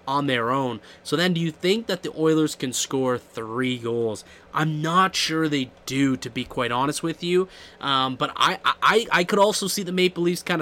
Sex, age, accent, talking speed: male, 20-39, American, 215 wpm